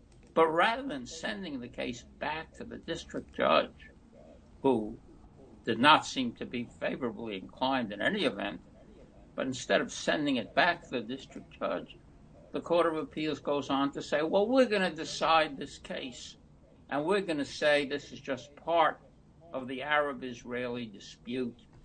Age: 60-79